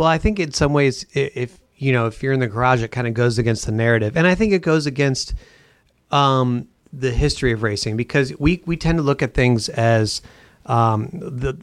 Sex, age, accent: male, 30-49, American